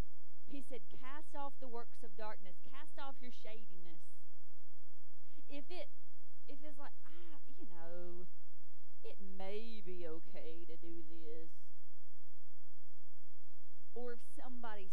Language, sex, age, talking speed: English, female, 40-59, 120 wpm